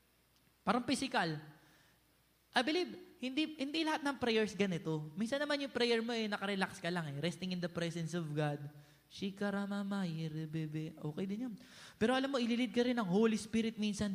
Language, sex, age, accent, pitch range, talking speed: Filipino, male, 20-39, native, 185-265 Hz, 190 wpm